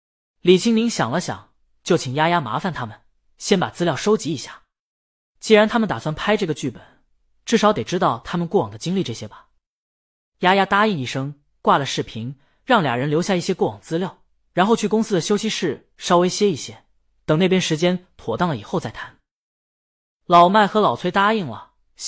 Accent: native